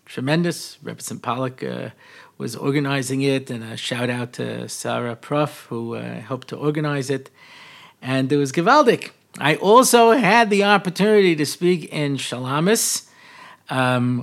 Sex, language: male, English